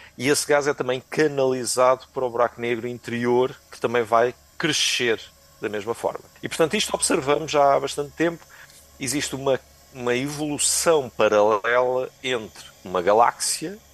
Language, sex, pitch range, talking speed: Portuguese, male, 105-145 Hz, 145 wpm